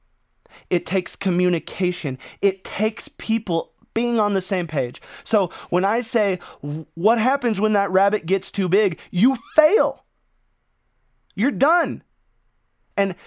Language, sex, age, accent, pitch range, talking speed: English, male, 20-39, American, 150-195 Hz, 125 wpm